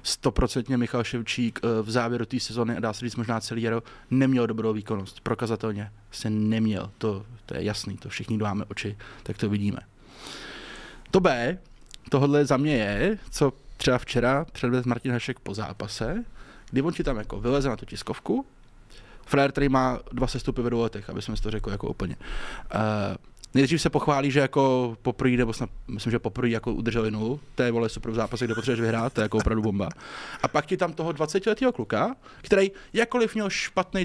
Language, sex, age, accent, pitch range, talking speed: Czech, male, 20-39, native, 110-140 Hz, 180 wpm